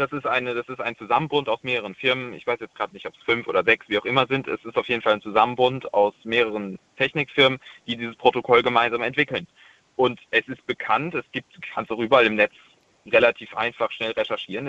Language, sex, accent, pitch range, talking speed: German, male, German, 120-145 Hz, 225 wpm